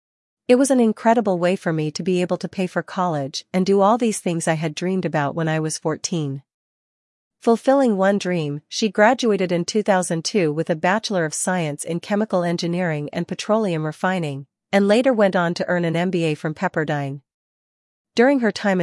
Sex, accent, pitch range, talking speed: female, American, 160-200 Hz, 185 wpm